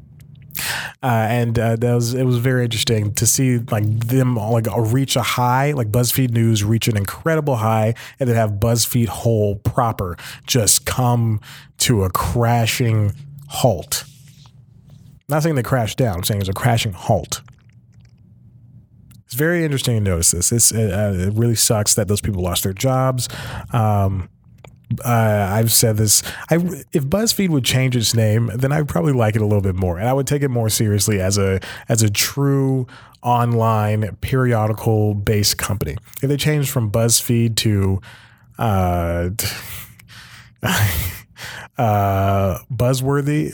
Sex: male